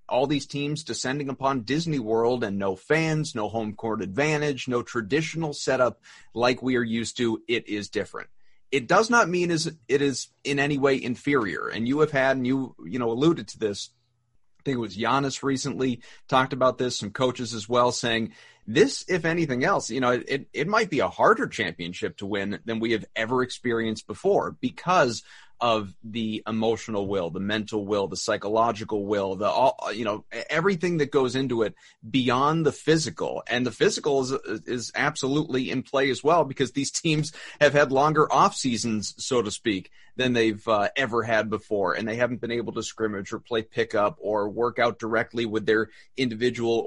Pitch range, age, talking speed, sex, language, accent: 110-140 Hz, 30-49, 190 wpm, male, English, American